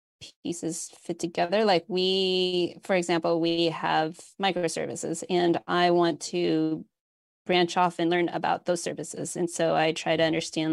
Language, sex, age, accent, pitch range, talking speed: English, female, 20-39, American, 160-185 Hz, 150 wpm